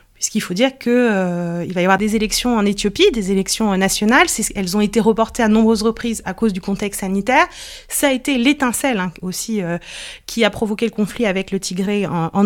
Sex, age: female, 30-49